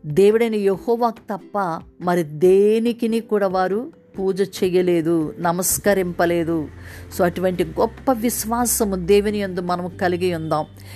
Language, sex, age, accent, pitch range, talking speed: Telugu, female, 50-69, native, 195-250 Hz, 100 wpm